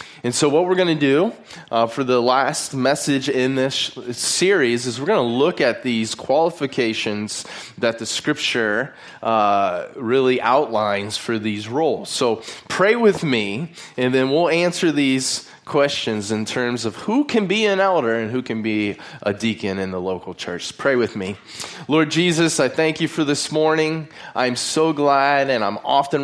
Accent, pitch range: American, 110-145 Hz